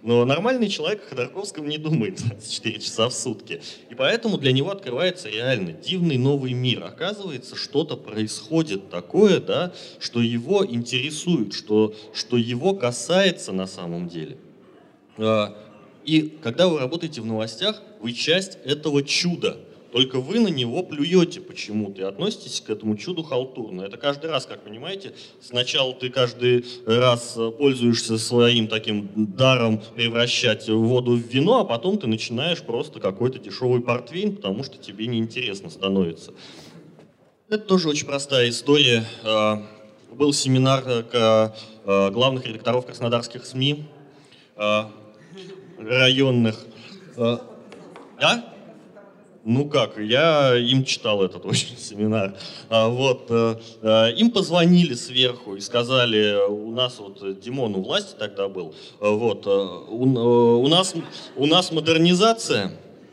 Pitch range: 110-150 Hz